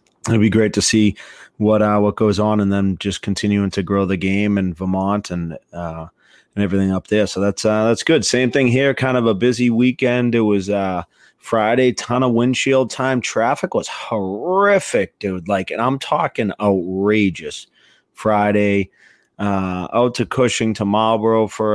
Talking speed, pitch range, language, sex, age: 180 wpm, 95-105 Hz, English, male, 30-49